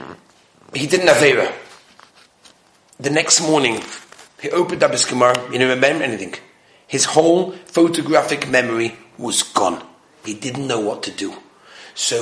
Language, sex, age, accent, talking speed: English, male, 40-59, British, 145 wpm